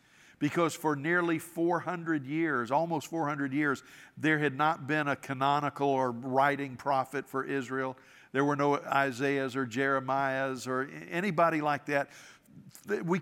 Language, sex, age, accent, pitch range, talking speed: English, male, 50-69, American, 130-155 Hz, 135 wpm